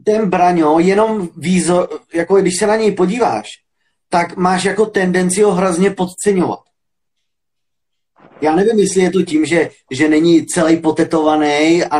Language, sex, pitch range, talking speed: Czech, male, 150-185 Hz, 145 wpm